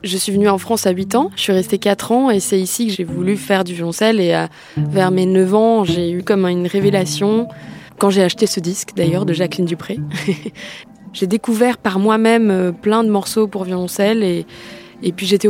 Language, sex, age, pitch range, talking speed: French, female, 20-39, 180-210 Hz, 215 wpm